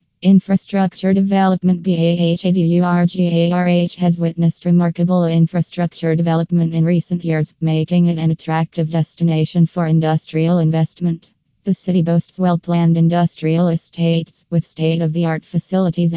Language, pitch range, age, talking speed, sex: English, 165-175 Hz, 20-39, 105 wpm, female